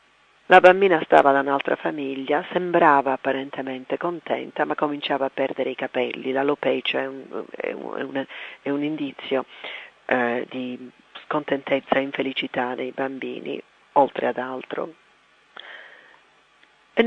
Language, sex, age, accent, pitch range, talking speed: Italian, female, 40-59, native, 135-170 Hz, 125 wpm